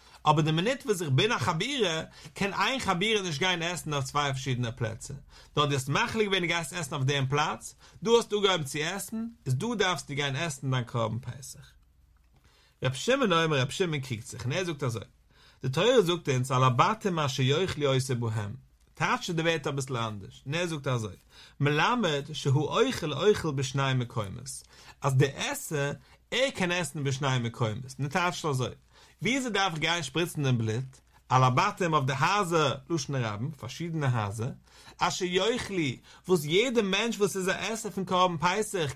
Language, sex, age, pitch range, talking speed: English, male, 50-69, 135-195 Hz, 115 wpm